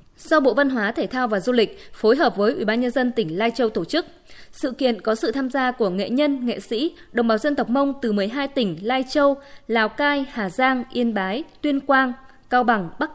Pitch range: 205-275 Hz